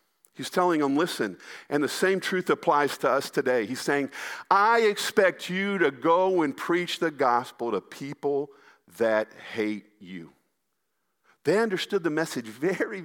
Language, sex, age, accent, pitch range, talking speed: English, male, 50-69, American, 140-190 Hz, 150 wpm